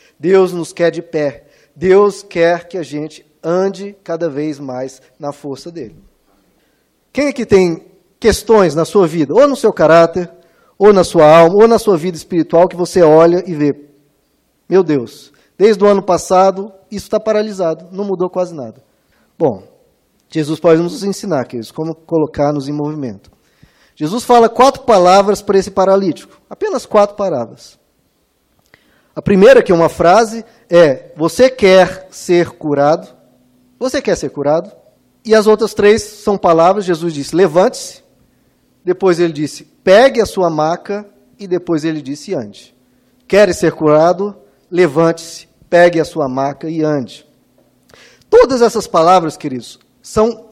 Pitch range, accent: 155-205 Hz, Brazilian